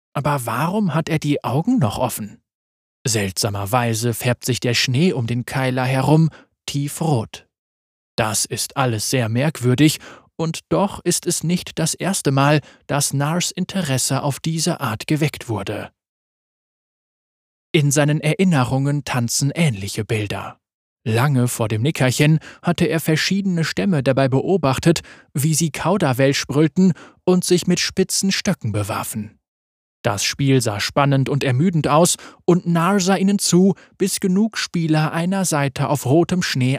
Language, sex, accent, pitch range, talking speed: German, male, German, 120-165 Hz, 140 wpm